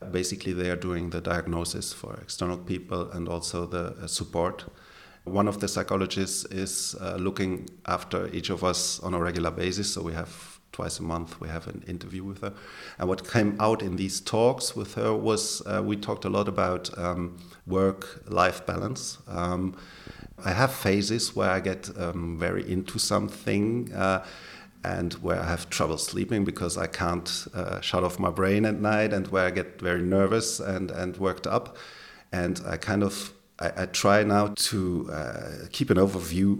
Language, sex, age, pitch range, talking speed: English, male, 40-59, 90-100 Hz, 180 wpm